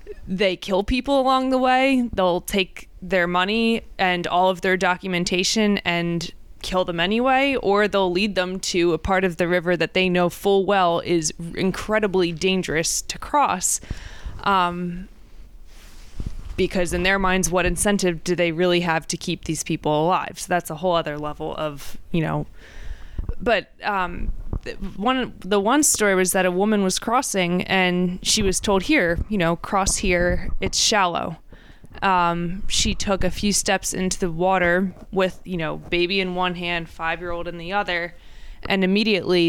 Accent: American